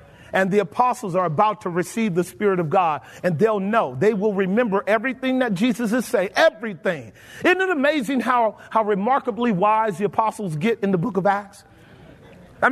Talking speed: 185 wpm